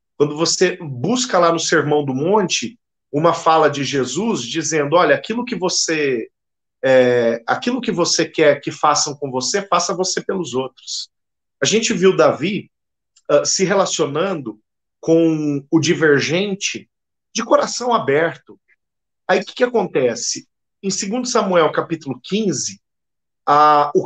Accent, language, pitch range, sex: Brazilian, Portuguese, 145-185 Hz, male